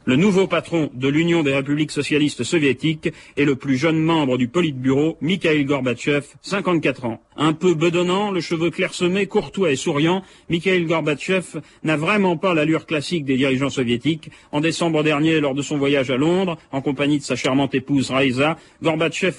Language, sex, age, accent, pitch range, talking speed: French, male, 40-59, French, 110-165 Hz, 175 wpm